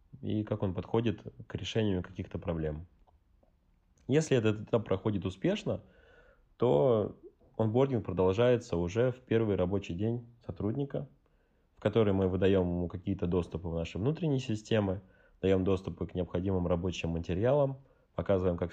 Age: 20-39